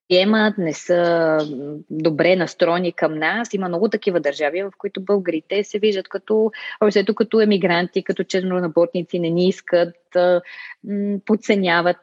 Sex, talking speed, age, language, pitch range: female, 120 wpm, 20-39, Bulgarian, 165-210 Hz